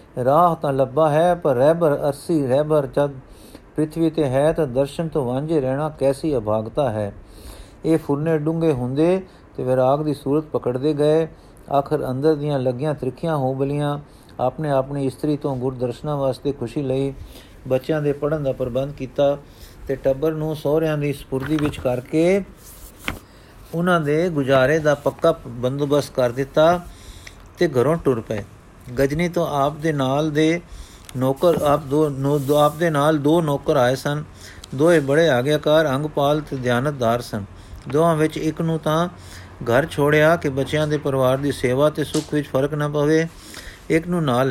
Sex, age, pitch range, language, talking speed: male, 50-69, 130-155 Hz, Punjabi, 160 wpm